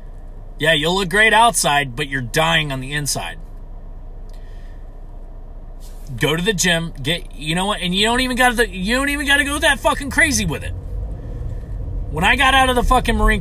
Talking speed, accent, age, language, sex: 190 wpm, American, 30-49, English, male